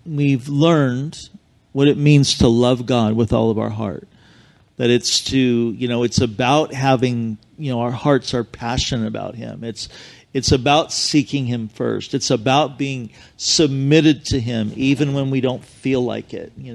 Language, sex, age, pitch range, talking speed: English, male, 40-59, 115-140 Hz, 175 wpm